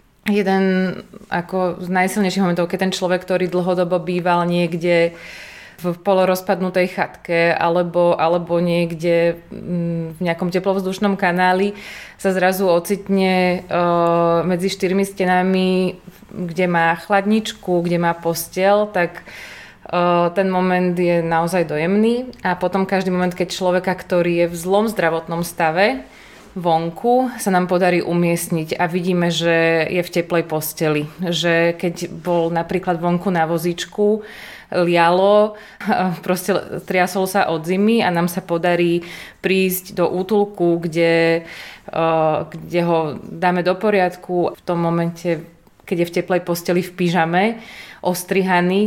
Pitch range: 170-190 Hz